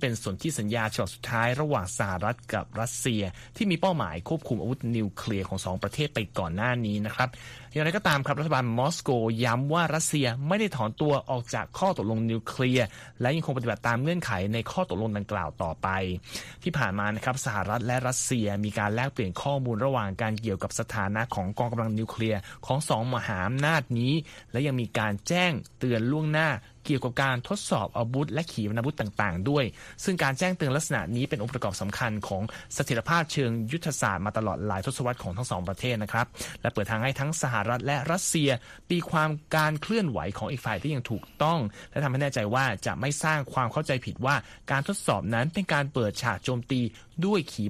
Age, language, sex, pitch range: 20-39, Thai, male, 110-145 Hz